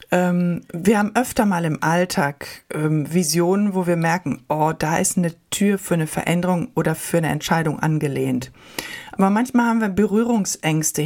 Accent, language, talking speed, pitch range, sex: German, German, 150 wpm, 165-205 Hz, female